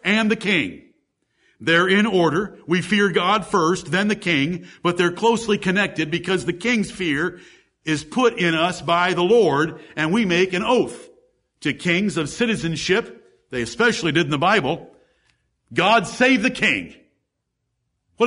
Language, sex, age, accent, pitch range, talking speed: English, male, 50-69, American, 145-215 Hz, 160 wpm